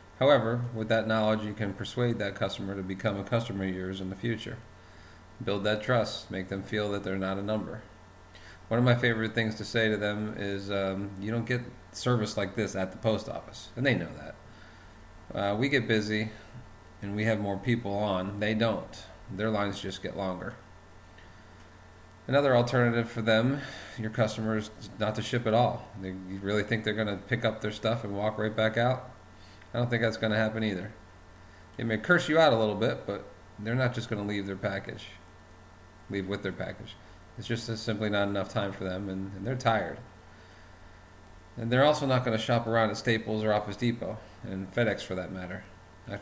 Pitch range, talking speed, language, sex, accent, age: 95-110 Hz, 205 wpm, English, male, American, 40-59